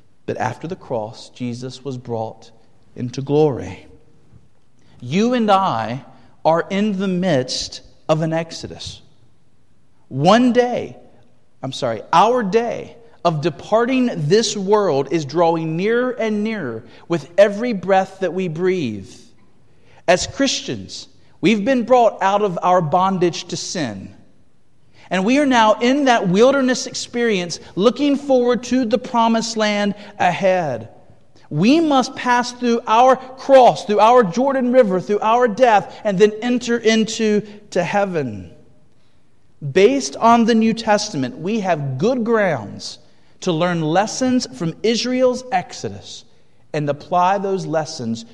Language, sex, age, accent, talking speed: English, male, 40-59, American, 130 wpm